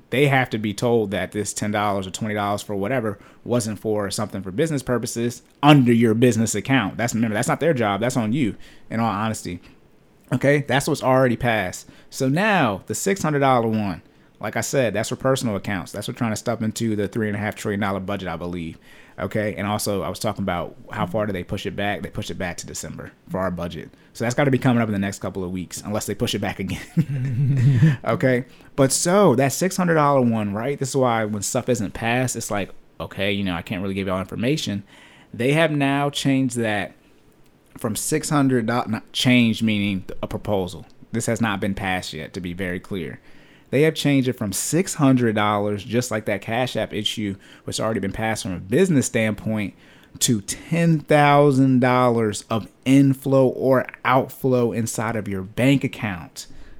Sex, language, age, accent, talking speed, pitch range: male, English, 30-49, American, 200 wpm, 100-130 Hz